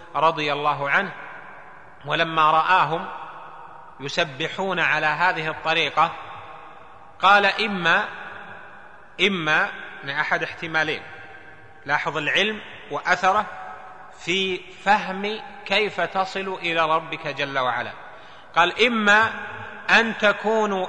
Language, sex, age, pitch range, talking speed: Arabic, male, 30-49, 155-195 Hz, 85 wpm